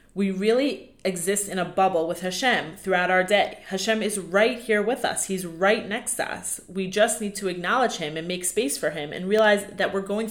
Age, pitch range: 30-49, 170-210 Hz